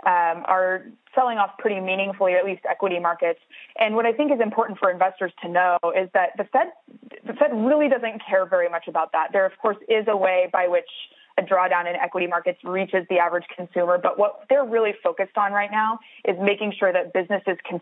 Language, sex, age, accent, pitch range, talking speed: English, female, 20-39, American, 180-230 Hz, 210 wpm